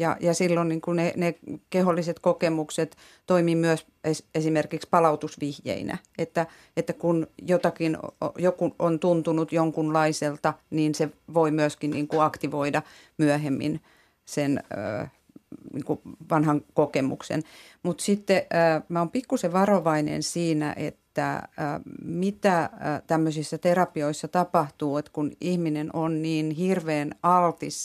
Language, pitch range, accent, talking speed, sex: Finnish, 150-175 Hz, native, 125 wpm, female